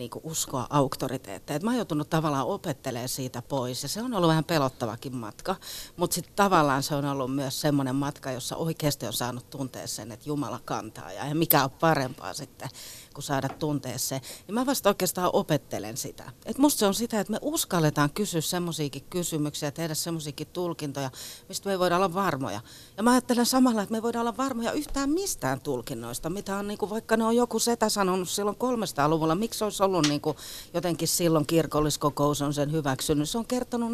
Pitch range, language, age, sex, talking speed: 135-195 Hz, Finnish, 40-59, female, 185 wpm